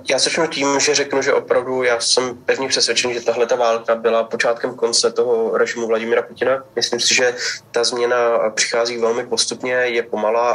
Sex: male